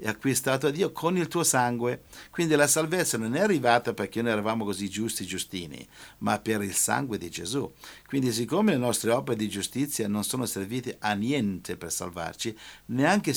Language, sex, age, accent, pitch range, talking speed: Italian, male, 50-69, native, 100-130 Hz, 190 wpm